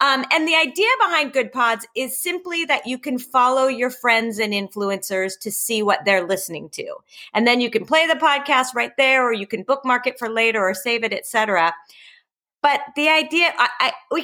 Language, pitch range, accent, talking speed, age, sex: English, 215-290 Hz, American, 195 wpm, 30-49, female